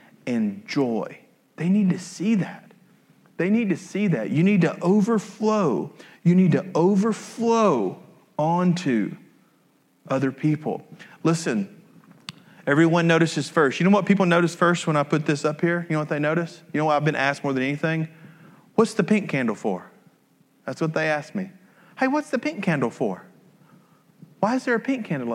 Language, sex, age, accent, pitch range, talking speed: English, male, 40-59, American, 150-195 Hz, 175 wpm